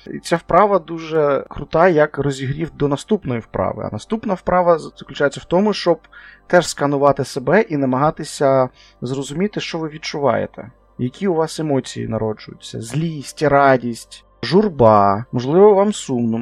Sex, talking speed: male, 135 wpm